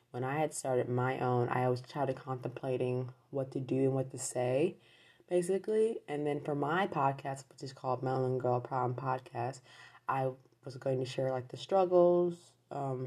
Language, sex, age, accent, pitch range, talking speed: English, female, 20-39, American, 125-150 Hz, 185 wpm